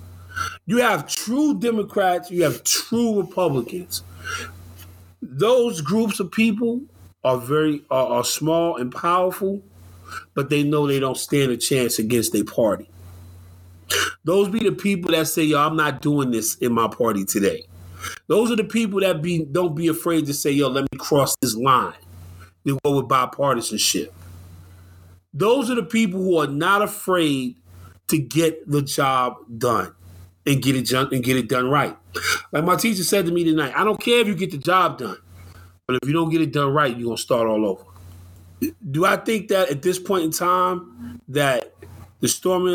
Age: 30-49